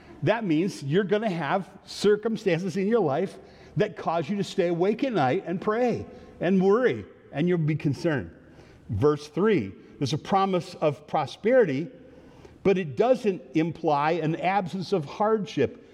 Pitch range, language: 155-200 Hz, English